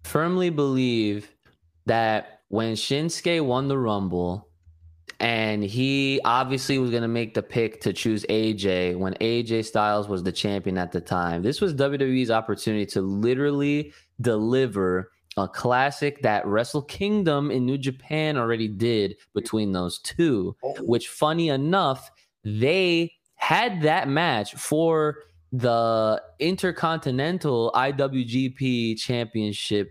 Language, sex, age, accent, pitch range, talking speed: English, male, 20-39, American, 110-145 Hz, 120 wpm